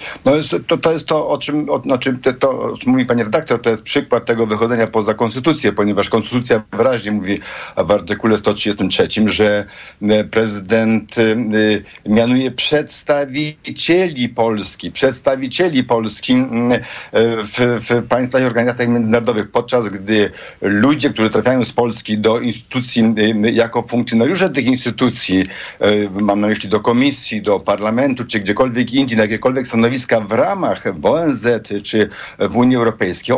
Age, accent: 60-79, native